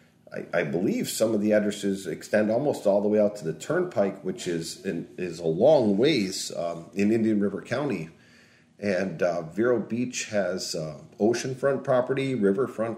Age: 40-59